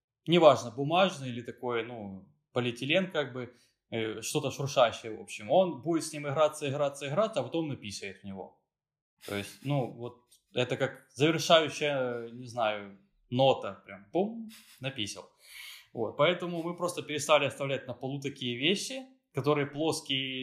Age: 20-39